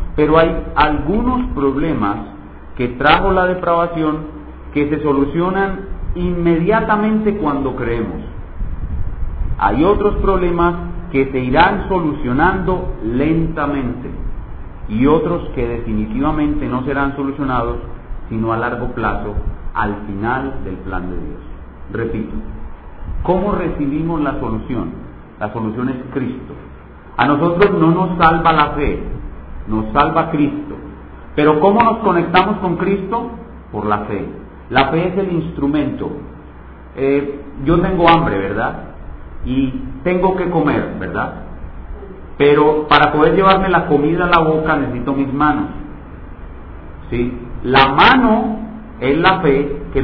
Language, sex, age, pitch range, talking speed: Spanish, male, 40-59, 105-165 Hz, 120 wpm